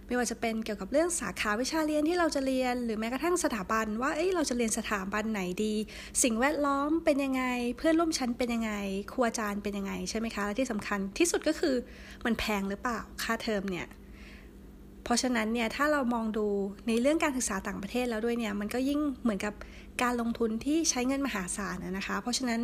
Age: 20-39